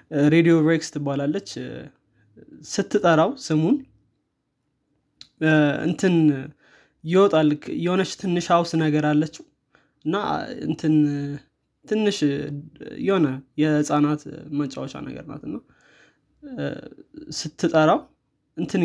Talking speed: 65 wpm